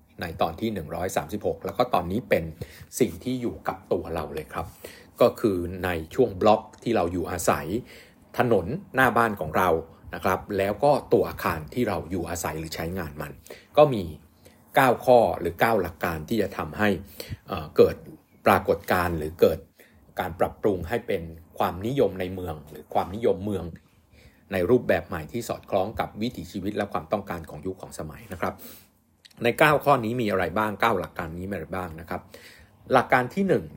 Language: Thai